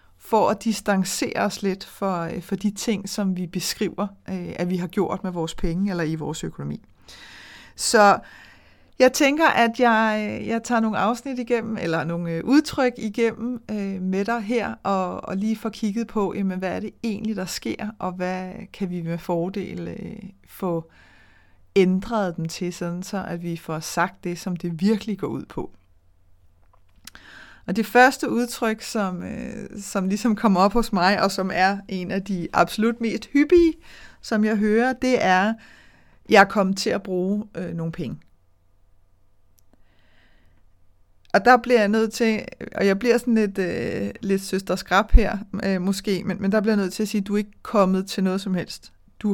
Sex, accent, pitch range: female, native, 175-220 Hz